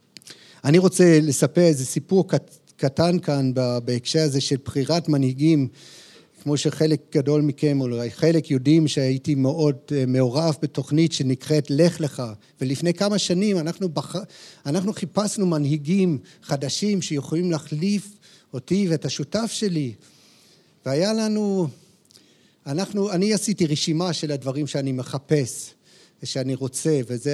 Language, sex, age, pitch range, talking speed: Hebrew, male, 50-69, 145-185 Hz, 120 wpm